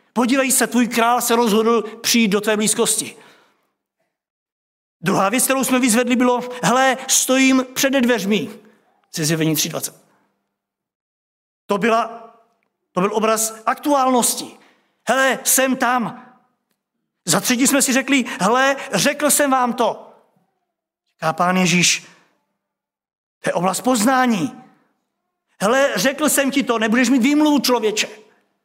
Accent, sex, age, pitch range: native, male, 50-69, 200-255 Hz